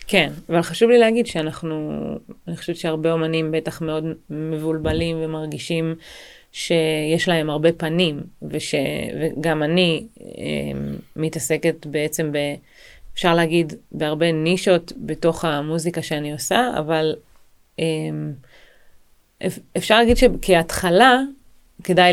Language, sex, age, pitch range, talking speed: Hebrew, female, 30-49, 150-170 Hz, 110 wpm